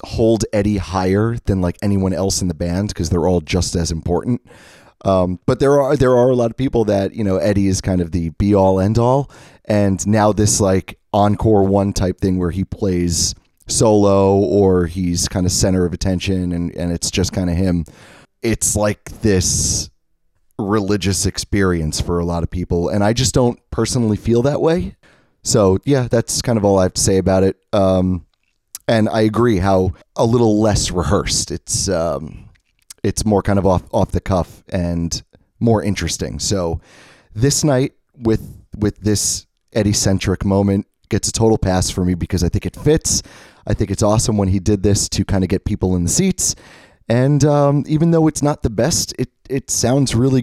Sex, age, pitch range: male, 30-49, 95-115 Hz